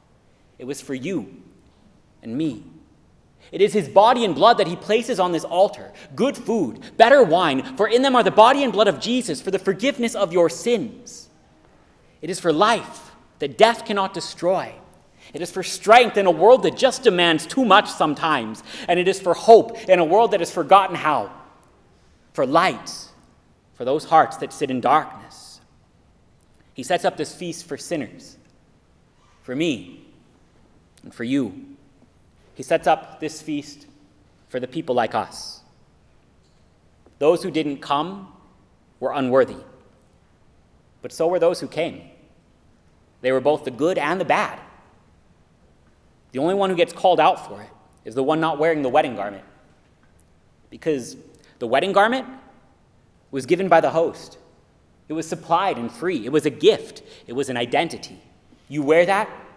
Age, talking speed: 30-49, 165 wpm